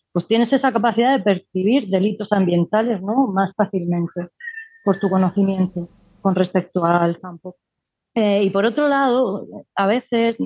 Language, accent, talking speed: Spanish, Spanish, 145 wpm